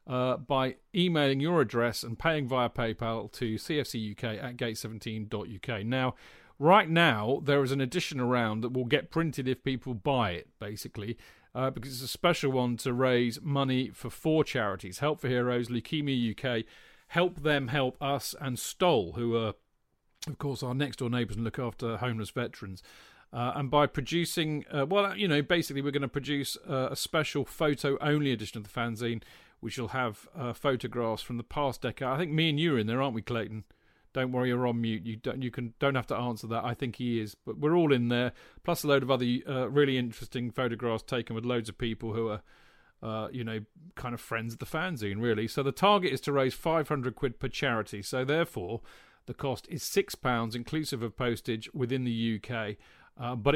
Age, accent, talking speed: 40-59, British, 205 wpm